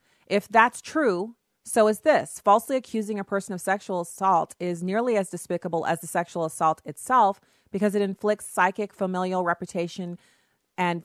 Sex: female